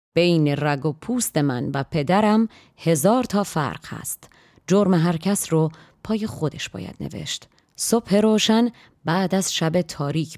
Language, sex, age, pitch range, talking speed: Persian, female, 30-49, 150-190 Hz, 145 wpm